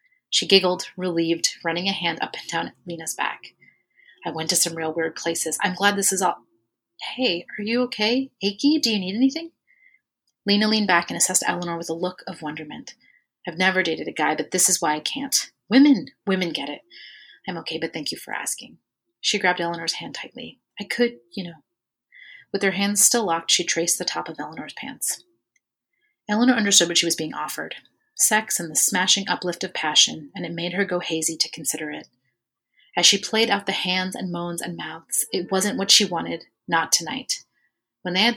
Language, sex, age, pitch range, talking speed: English, female, 30-49, 170-205 Hz, 200 wpm